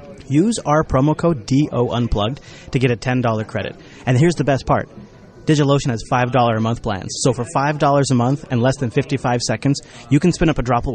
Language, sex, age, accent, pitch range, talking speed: English, male, 30-49, American, 120-145 Hz, 215 wpm